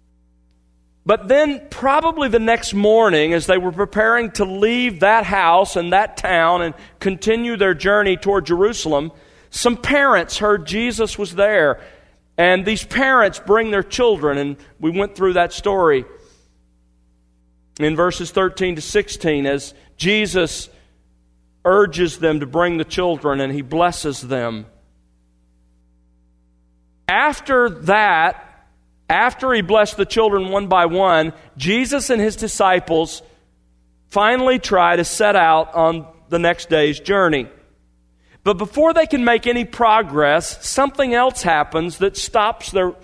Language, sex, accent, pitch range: English, male, American, 145-215 Hz